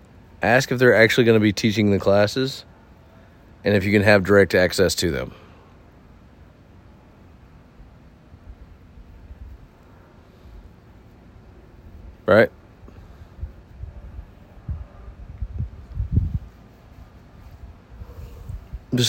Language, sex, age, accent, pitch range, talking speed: English, male, 30-49, American, 85-115 Hz, 65 wpm